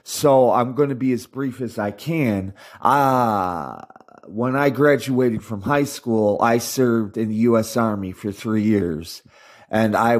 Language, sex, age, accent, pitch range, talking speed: English, male, 30-49, American, 105-135 Hz, 170 wpm